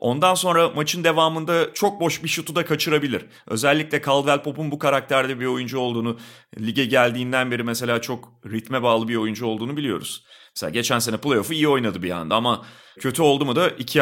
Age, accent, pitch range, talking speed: 40-59, native, 110-145 Hz, 185 wpm